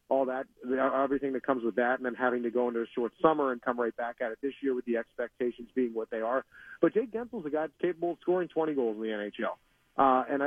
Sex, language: male, English